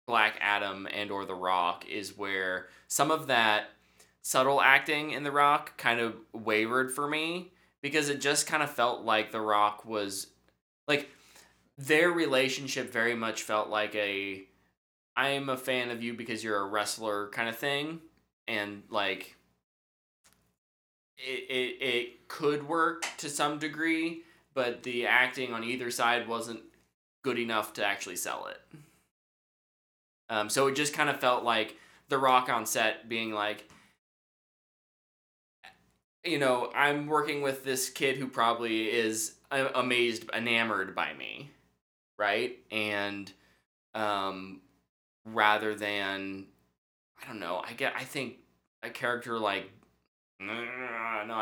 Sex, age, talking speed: male, 20-39, 140 wpm